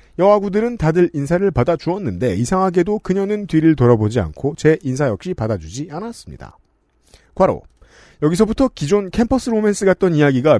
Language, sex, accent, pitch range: Korean, male, native, 140-195 Hz